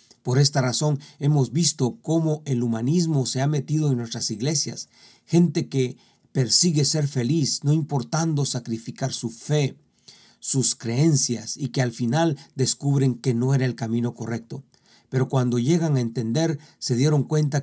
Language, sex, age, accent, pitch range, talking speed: Spanish, male, 40-59, Mexican, 120-150 Hz, 155 wpm